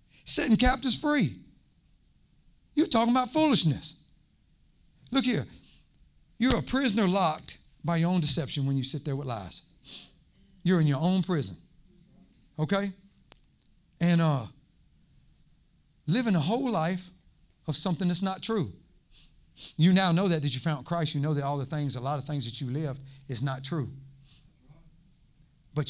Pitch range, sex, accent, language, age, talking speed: 145-190 Hz, male, American, English, 40-59, 150 wpm